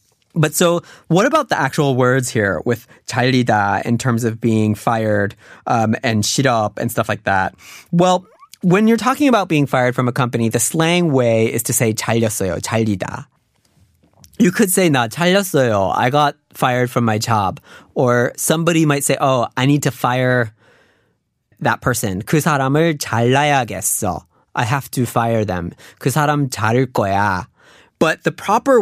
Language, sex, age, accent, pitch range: Korean, male, 20-39, American, 115-155 Hz